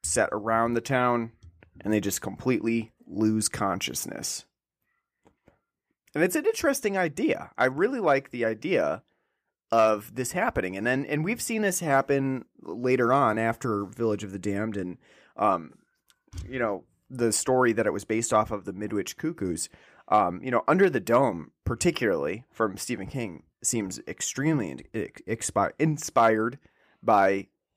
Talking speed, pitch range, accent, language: 145 wpm, 110-135 Hz, American, English